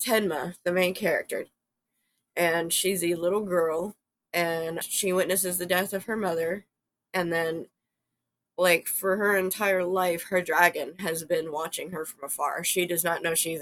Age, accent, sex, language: 20-39, American, female, English